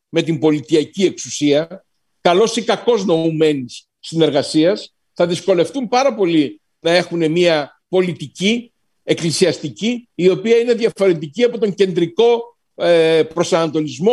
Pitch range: 150-210 Hz